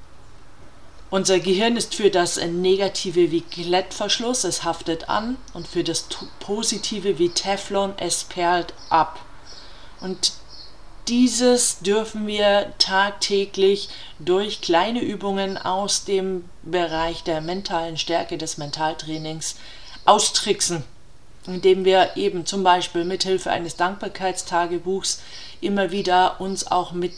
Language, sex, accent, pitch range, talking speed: German, female, German, 170-200 Hz, 110 wpm